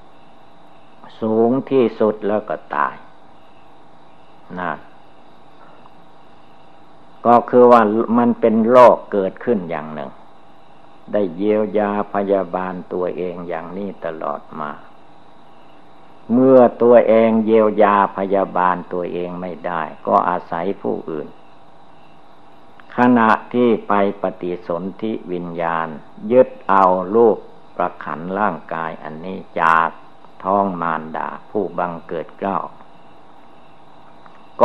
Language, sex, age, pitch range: Thai, male, 60-79, 90-125 Hz